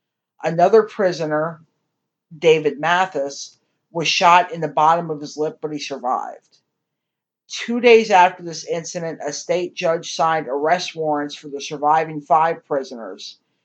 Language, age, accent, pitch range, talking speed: English, 50-69, American, 150-180 Hz, 135 wpm